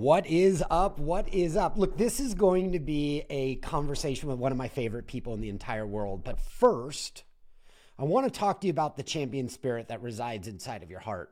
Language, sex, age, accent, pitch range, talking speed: English, male, 30-49, American, 125-180 Hz, 225 wpm